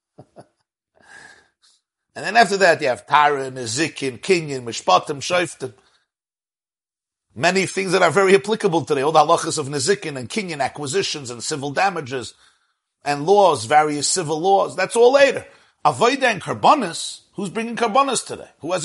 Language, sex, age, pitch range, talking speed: English, male, 50-69, 150-235 Hz, 145 wpm